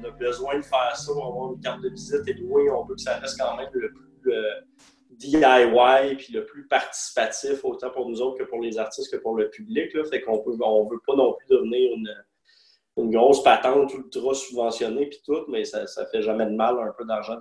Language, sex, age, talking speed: French, male, 30-49, 235 wpm